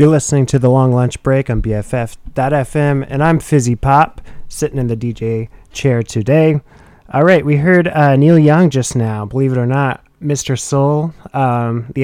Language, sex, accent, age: English, male, American, 30-49